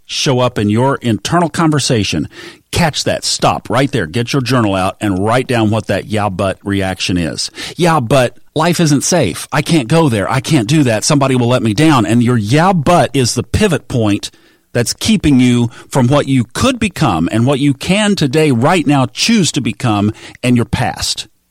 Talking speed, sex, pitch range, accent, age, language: 200 wpm, male, 95-130 Hz, American, 40-59, English